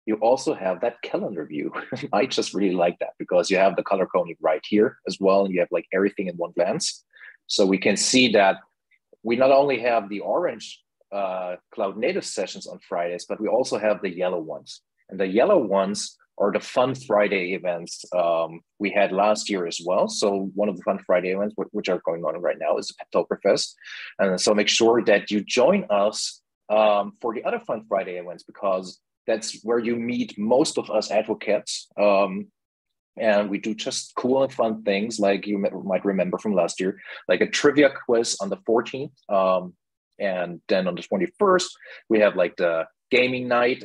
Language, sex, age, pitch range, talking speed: German, male, 30-49, 90-115 Hz, 200 wpm